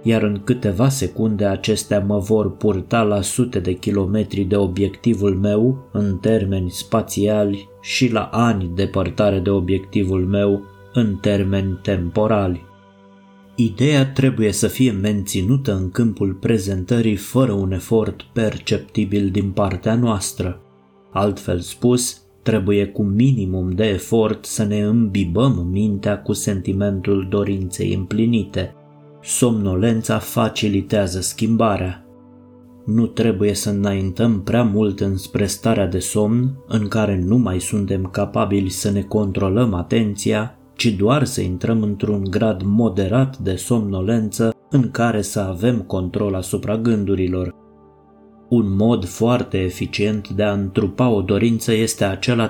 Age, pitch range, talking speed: 20-39, 95-115 Hz, 125 wpm